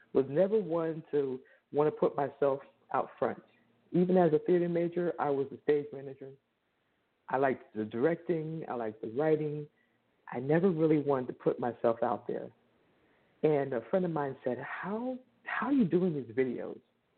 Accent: American